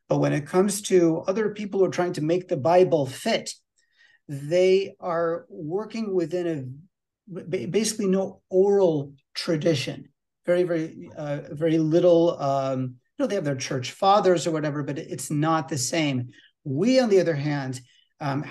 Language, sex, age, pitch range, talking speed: English, male, 50-69, 145-185 Hz, 160 wpm